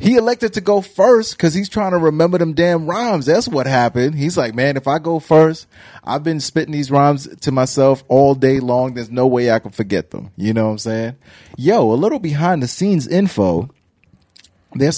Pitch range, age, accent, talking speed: 110-150 Hz, 30-49, American, 210 wpm